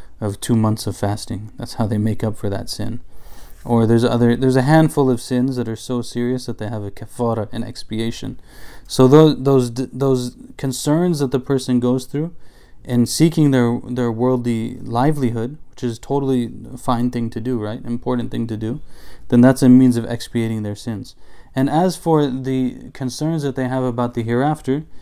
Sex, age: male, 20-39